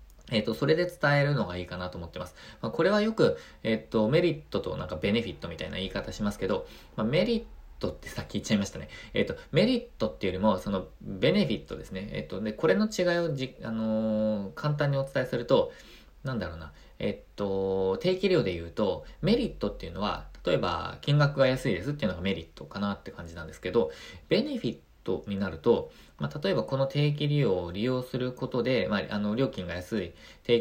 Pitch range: 95-130 Hz